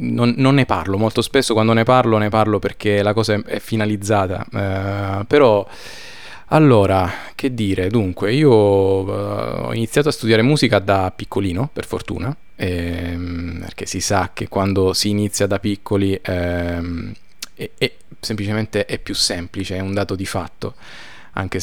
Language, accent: Italian, native